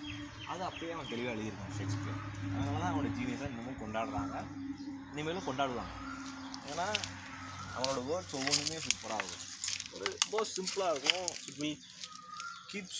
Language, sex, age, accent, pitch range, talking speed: Tamil, male, 20-39, native, 100-135 Hz, 110 wpm